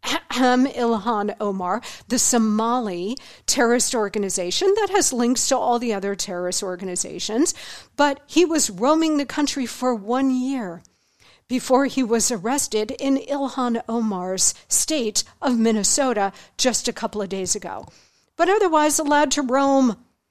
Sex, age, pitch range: female, 50-69, 220-260 Hz